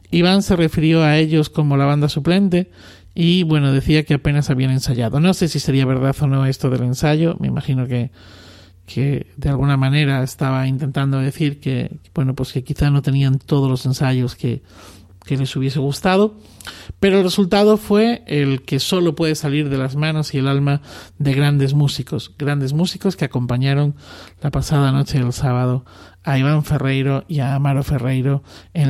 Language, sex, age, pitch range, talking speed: Spanish, male, 40-59, 130-170 Hz, 180 wpm